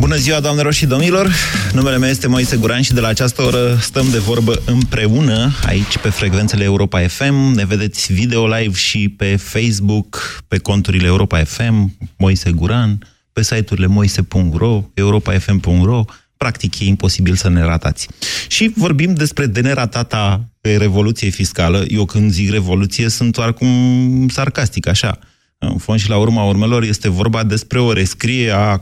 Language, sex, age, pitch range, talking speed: Romanian, male, 30-49, 100-125 Hz, 155 wpm